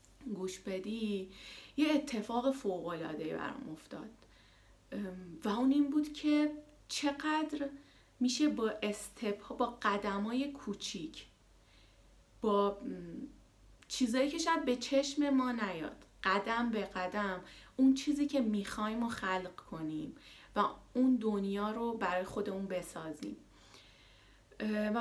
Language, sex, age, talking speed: Persian, female, 30-49, 115 wpm